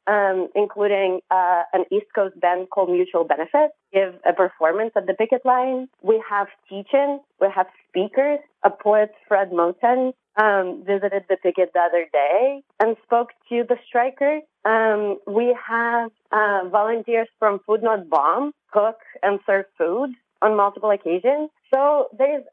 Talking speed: 150 wpm